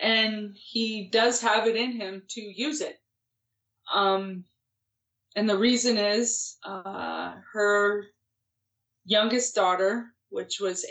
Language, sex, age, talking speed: English, female, 30-49, 115 wpm